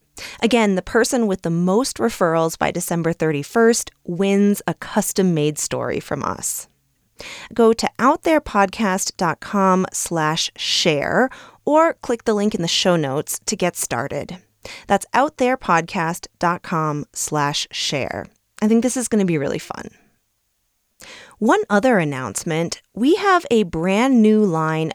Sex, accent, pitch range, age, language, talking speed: female, American, 165-230 Hz, 30-49, English, 130 wpm